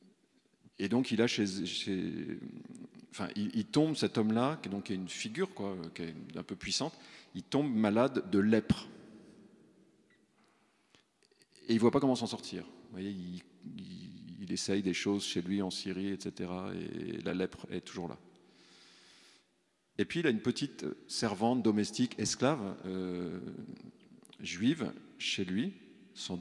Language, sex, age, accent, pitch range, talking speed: French, male, 40-59, French, 95-130 Hz, 155 wpm